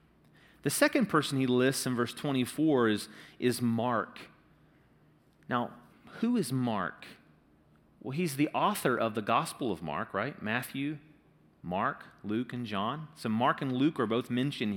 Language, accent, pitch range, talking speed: English, American, 120-190 Hz, 150 wpm